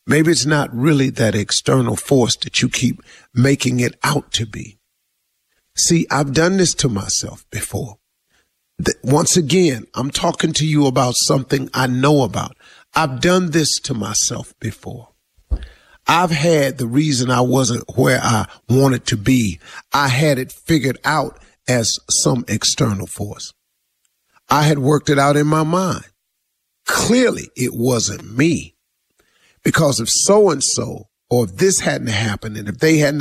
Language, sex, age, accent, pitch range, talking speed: English, male, 50-69, American, 115-150 Hz, 150 wpm